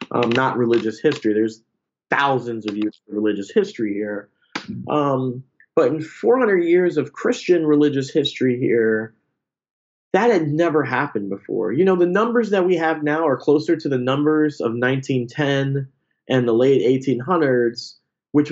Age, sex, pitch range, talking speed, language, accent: 30-49, male, 130-185 Hz, 150 wpm, English, American